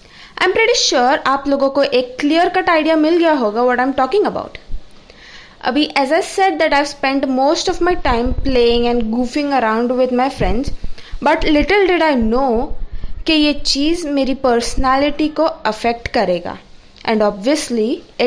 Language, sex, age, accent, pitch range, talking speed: Hindi, female, 20-39, native, 245-310 Hz, 170 wpm